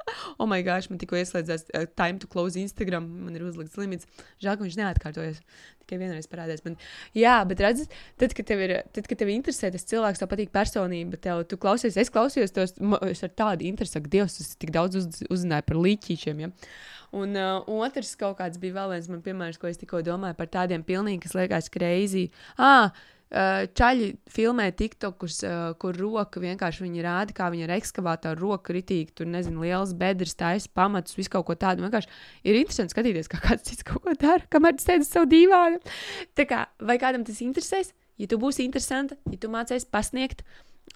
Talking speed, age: 180 wpm, 20-39